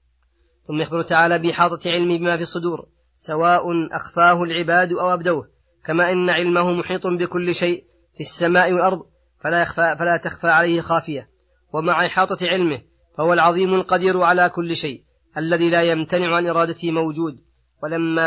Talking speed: 140 wpm